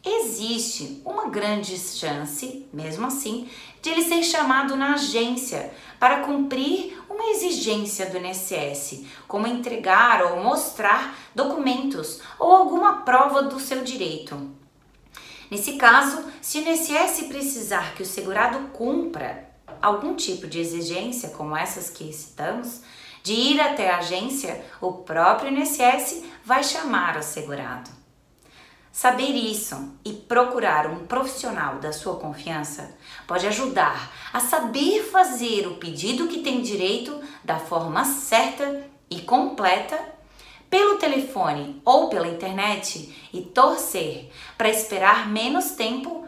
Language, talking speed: Portuguese, 120 wpm